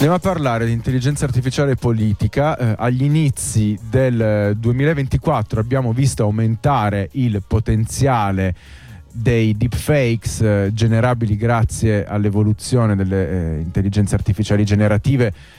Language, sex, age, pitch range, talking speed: Italian, male, 30-49, 105-125 Hz, 110 wpm